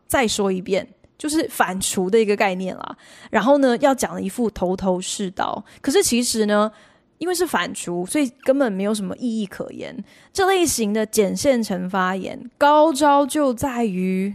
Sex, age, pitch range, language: female, 20-39, 195-270 Hz, Chinese